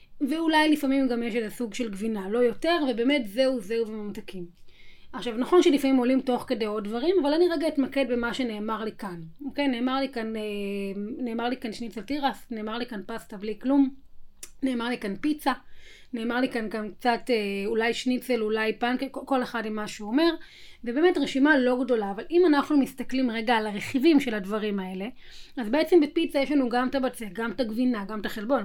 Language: Hebrew